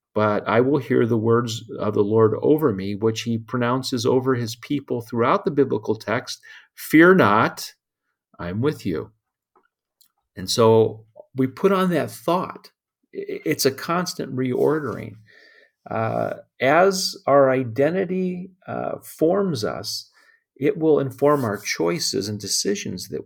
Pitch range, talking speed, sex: 105-145 Hz, 135 wpm, male